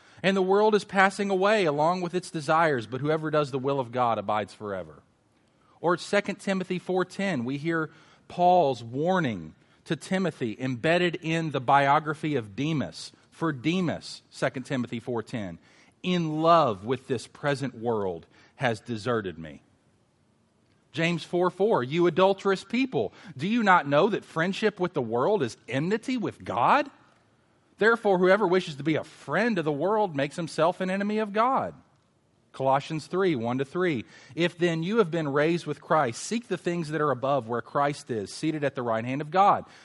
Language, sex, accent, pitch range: English, male, American, 125-180 Hz